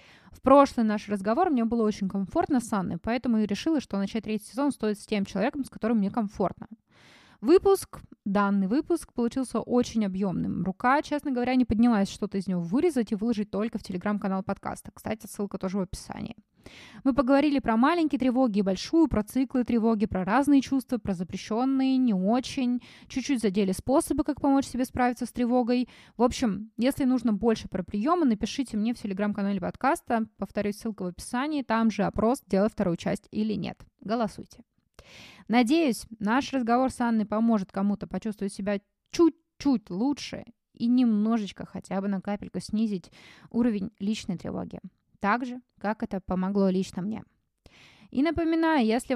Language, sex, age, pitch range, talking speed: Russian, female, 20-39, 205-255 Hz, 160 wpm